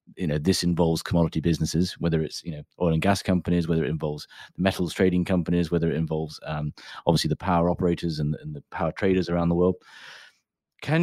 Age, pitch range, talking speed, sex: 30-49, 85-95 Hz, 200 wpm, male